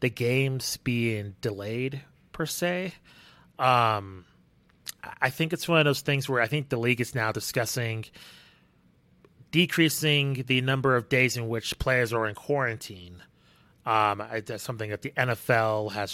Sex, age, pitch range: male, 30-49, 110-135 Hz